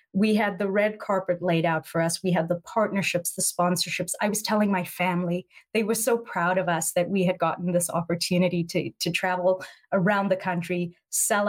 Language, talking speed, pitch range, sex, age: English, 205 wpm, 175-215 Hz, female, 30-49